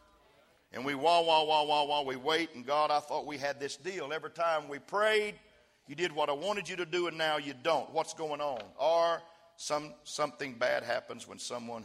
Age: 50-69